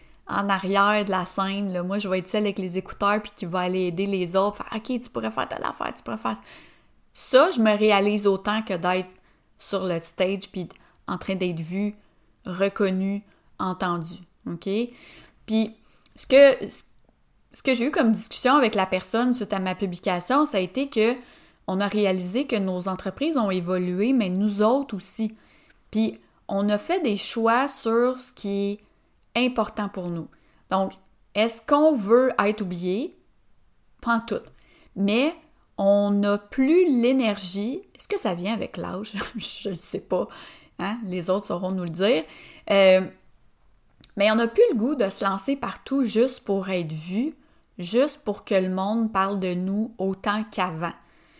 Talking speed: 180 wpm